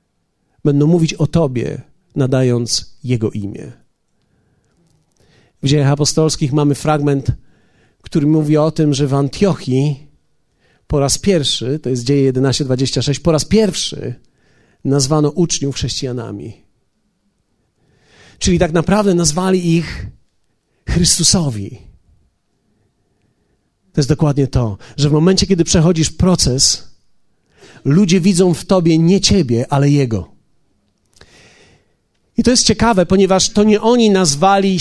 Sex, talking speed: male, 110 wpm